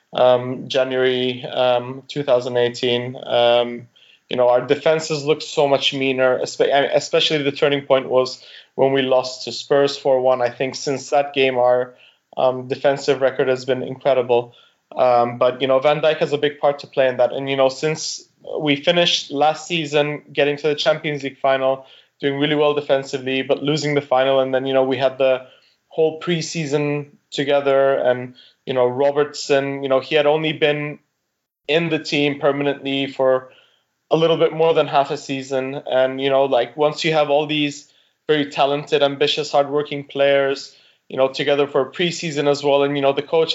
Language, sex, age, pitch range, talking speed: English, male, 20-39, 130-150 Hz, 180 wpm